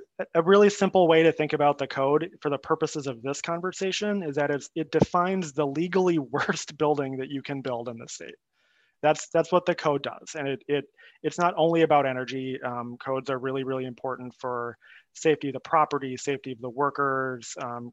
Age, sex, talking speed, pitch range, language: 30-49, male, 200 wpm, 130-155 Hz, English